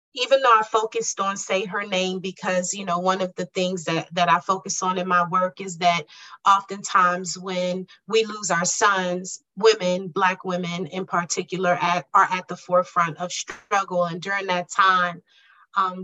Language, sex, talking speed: English, female, 180 wpm